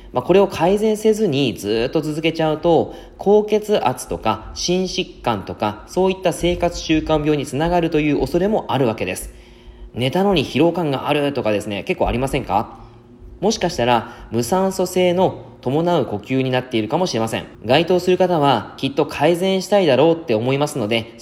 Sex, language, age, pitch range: male, Japanese, 20-39, 120-175 Hz